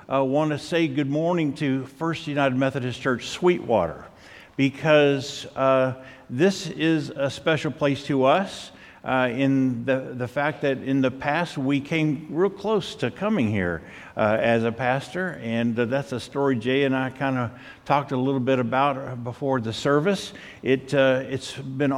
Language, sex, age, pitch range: English, male, 50-69, 120-145 Hz